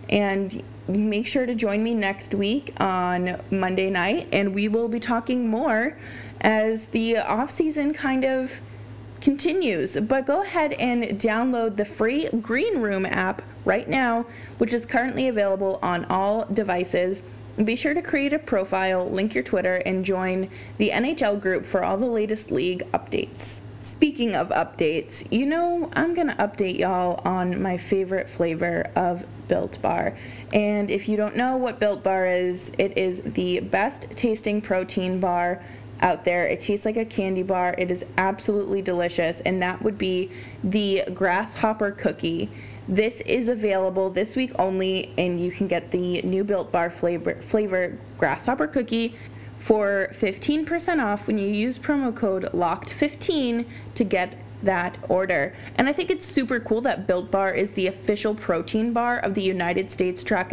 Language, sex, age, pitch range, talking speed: English, female, 20-39, 185-235 Hz, 165 wpm